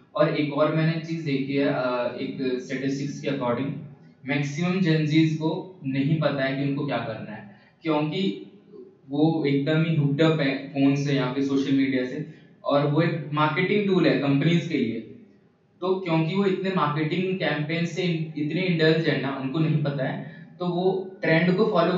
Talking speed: 165 wpm